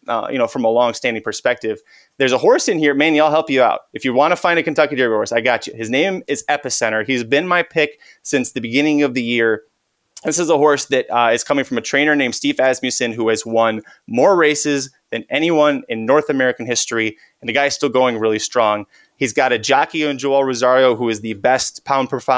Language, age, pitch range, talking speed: English, 30-49, 120-145 Hz, 235 wpm